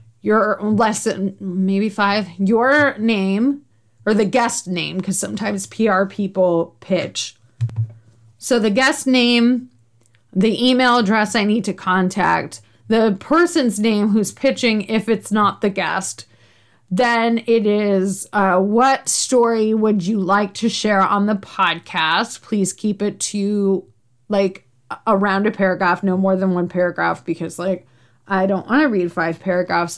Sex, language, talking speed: female, English, 145 wpm